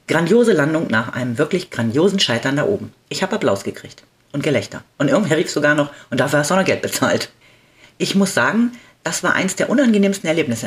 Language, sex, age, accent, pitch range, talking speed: German, female, 40-59, German, 135-180 Hz, 210 wpm